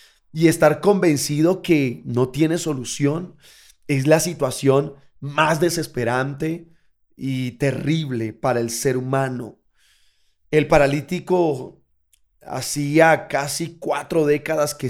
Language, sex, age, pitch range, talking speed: Spanish, male, 30-49, 120-170 Hz, 100 wpm